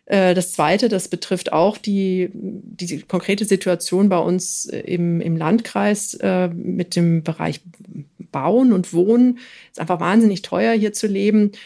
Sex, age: female, 40-59